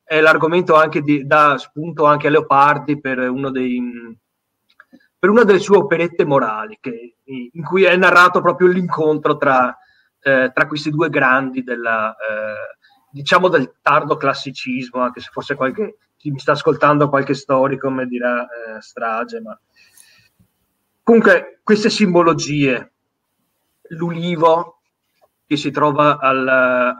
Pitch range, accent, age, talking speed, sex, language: 130-160 Hz, native, 30-49, 135 wpm, male, Italian